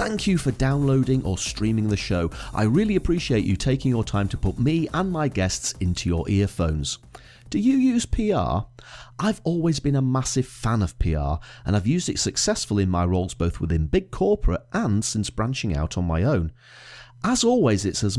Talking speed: 195 wpm